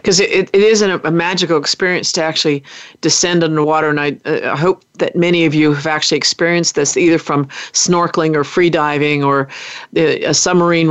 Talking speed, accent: 195 wpm, American